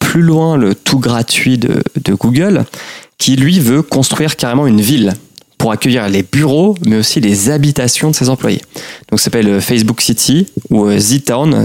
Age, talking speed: 20-39, 170 wpm